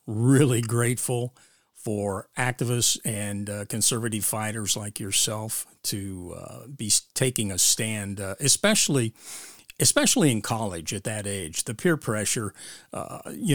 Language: English